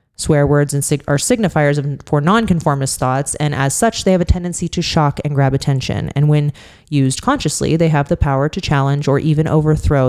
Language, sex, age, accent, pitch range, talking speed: English, female, 30-49, American, 140-170 Hz, 210 wpm